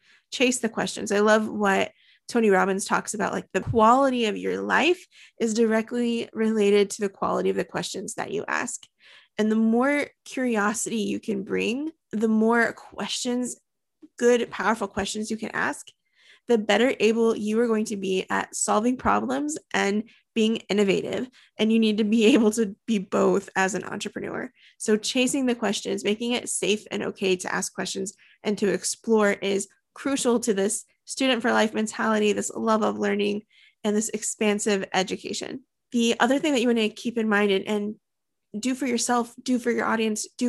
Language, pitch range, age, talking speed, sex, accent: English, 205-235 Hz, 20-39, 175 wpm, female, American